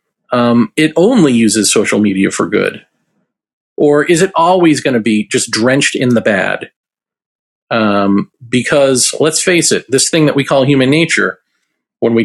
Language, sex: English, male